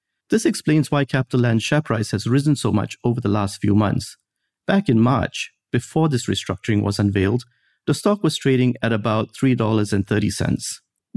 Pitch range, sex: 105-135 Hz, male